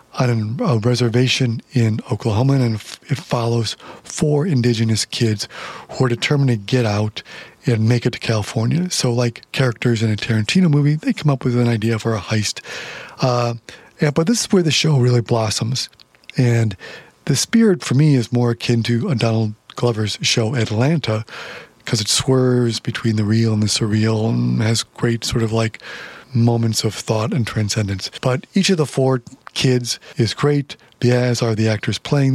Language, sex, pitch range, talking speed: English, male, 110-135 Hz, 175 wpm